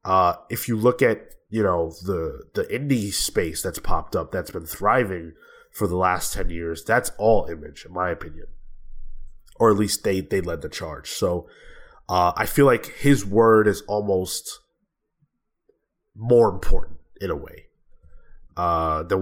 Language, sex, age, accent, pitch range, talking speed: English, male, 20-39, American, 95-125 Hz, 160 wpm